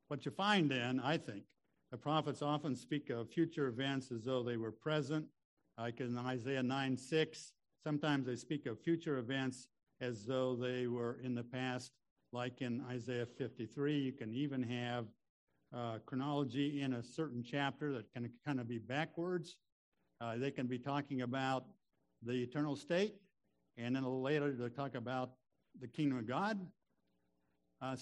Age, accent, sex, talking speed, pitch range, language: 60-79, American, male, 165 wpm, 120-155 Hz, English